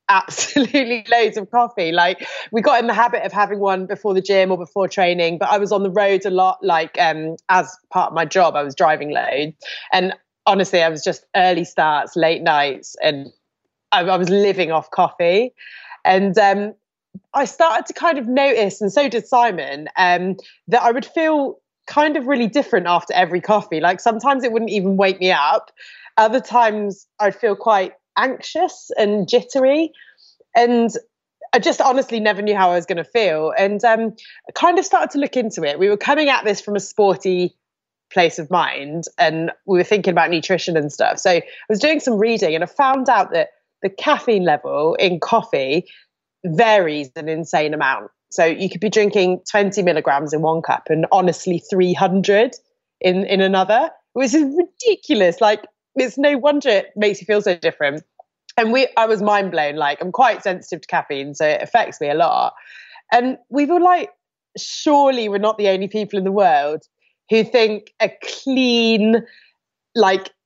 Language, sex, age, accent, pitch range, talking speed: English, female, 20-39, British, 180-245 Hz, 185 wpm